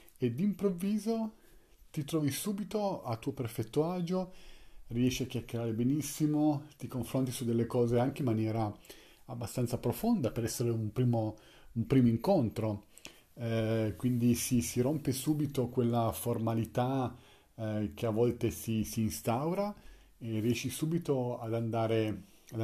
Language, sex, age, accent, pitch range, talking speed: Italian, male, 40-59, native, 110-145 Hz, 135 wpm